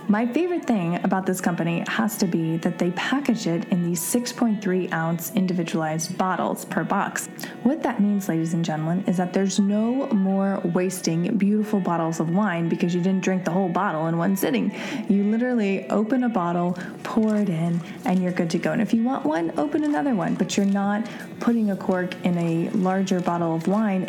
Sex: female